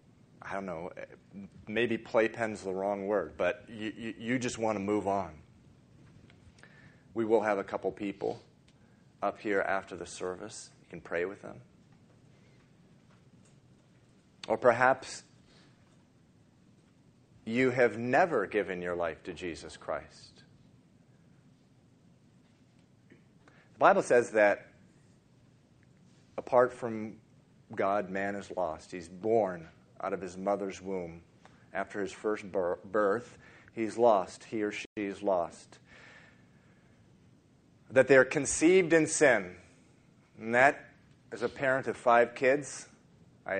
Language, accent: English, American